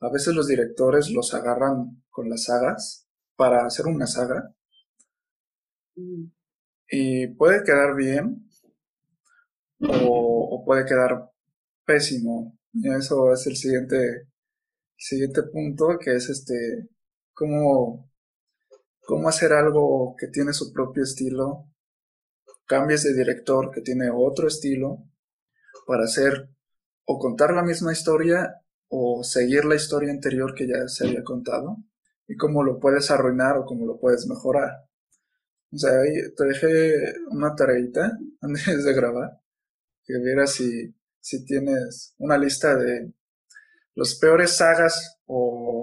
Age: 20-39